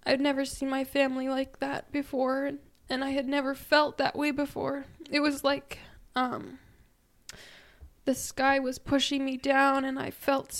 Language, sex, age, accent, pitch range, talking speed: English, female, 10-29, American, 215-265 Hz, 165 wpm